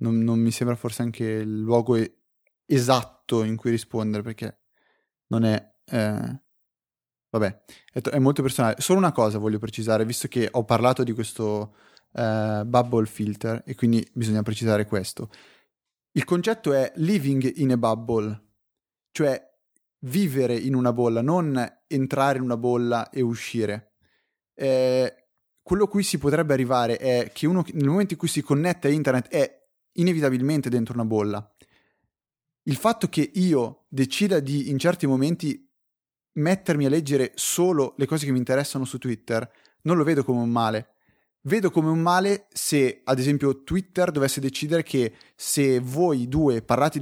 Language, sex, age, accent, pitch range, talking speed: Italian, male, 30-49, native, 115-145 Hz, 160 wpm